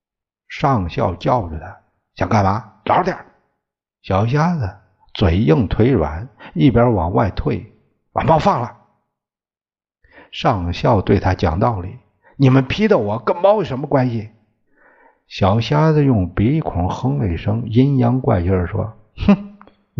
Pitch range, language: 90-120 Hz, Chinese